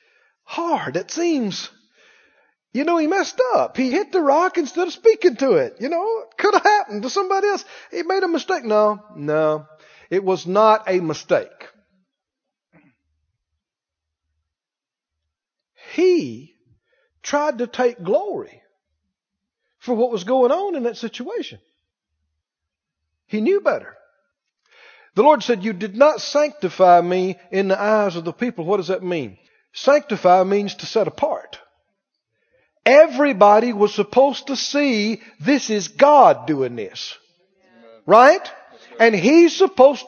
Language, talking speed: English, 135 wpm